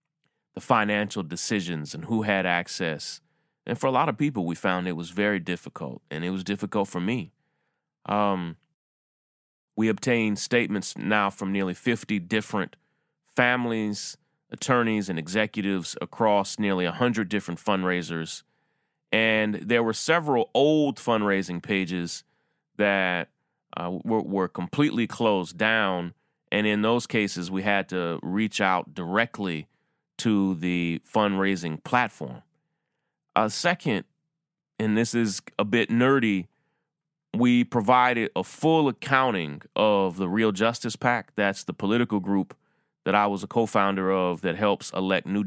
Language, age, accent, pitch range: English, 30-49, American, 95-120 Hz